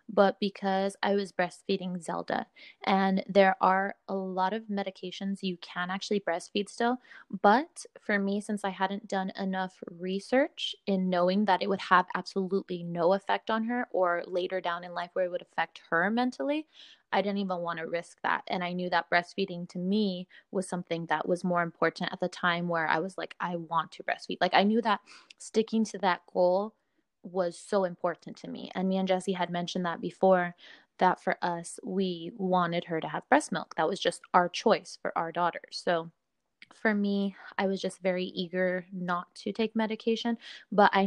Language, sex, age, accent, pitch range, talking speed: English, female, 20-39, American, 180-200 Hz, 195 wpm